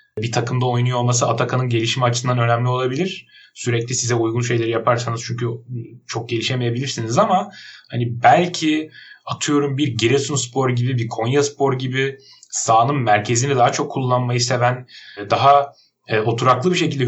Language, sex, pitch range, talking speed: Turkish, male, 120-145 Hz, 130 wpm